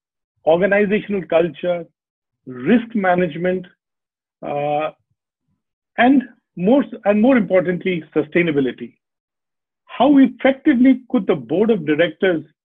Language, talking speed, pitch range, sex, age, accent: English, 85 wpm, 160-220 Hz, male, 40-59, Indian